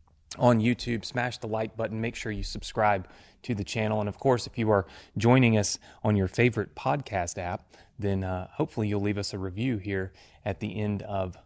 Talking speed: 205 wpm